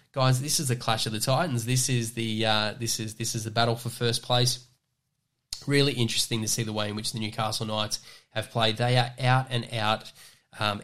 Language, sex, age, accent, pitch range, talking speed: English, male, 10-29, Australian, 110-130 Hz, 220 wpm